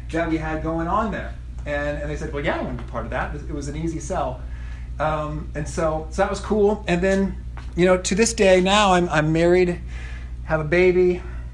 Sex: male